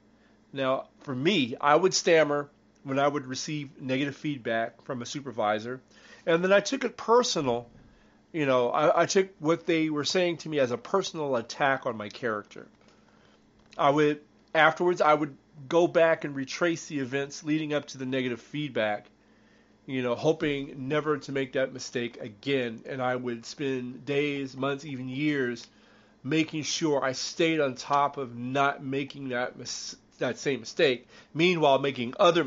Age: 40-59